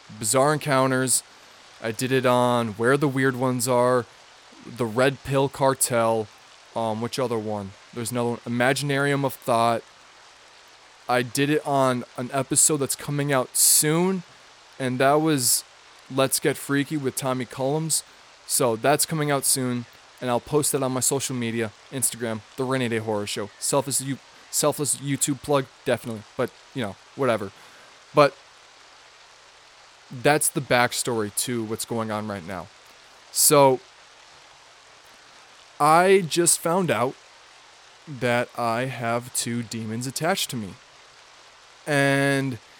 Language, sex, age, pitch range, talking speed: English, male, 20-39, 115-140 Hz, 135 wpm